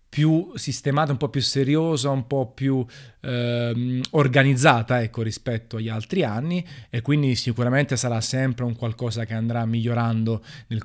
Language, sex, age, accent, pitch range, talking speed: Italian, male, 30-49, native, 115-135 Hz, 145 wpm